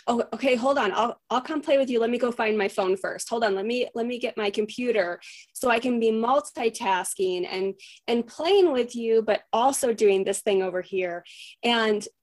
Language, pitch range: English, 180-220 Hz